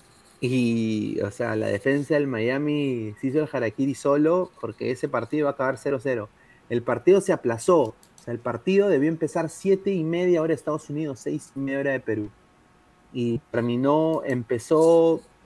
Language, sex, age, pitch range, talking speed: Spanish, male, 30-49, 120-160 Hz, 175 wpm